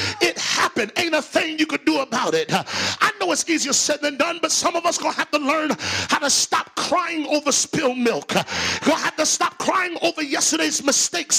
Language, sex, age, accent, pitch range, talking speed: English, male, 40-59, American, 285-350 Hz, 205 wpm